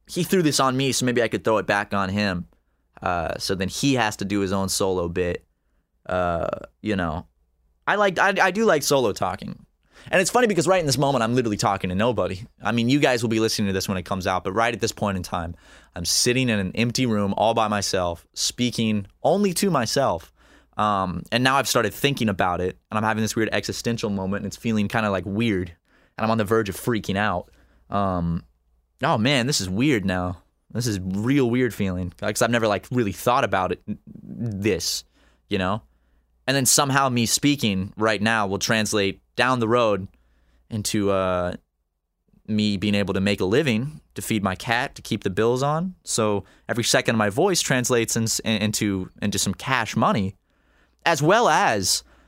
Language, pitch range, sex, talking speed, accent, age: English, 95-120 Hz, male, 210 wpm, American, 20-39